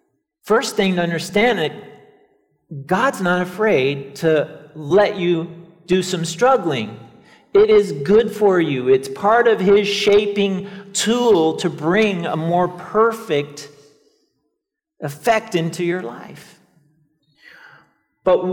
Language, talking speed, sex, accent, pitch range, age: English, 115 wpm, male, American, 160-220 Hz, 40-59